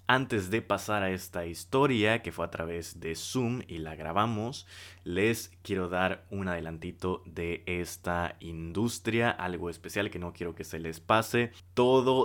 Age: 20-39